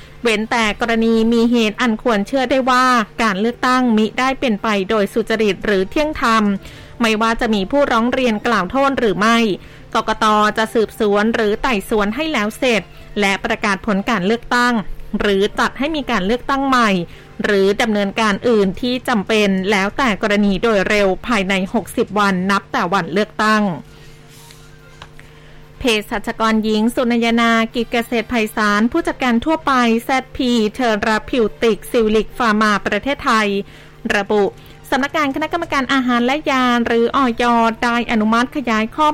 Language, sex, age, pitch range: Thai, female, 20-39, 210-245 Hz